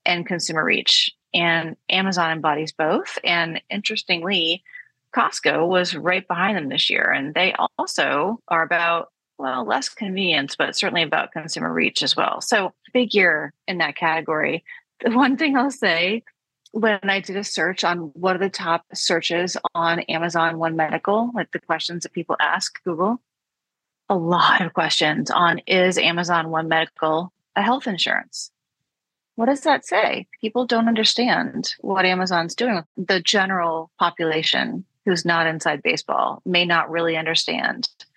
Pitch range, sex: 165-200 Hz, female